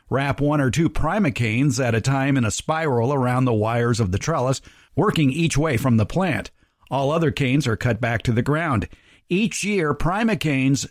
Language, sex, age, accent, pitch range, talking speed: English, male, 50-69, American, 120-150 Hz, 195 wpm